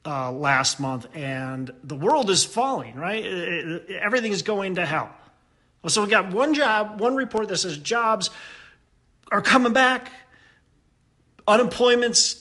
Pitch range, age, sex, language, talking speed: 135-195 Hz, 40-59, male, English, 155 wpm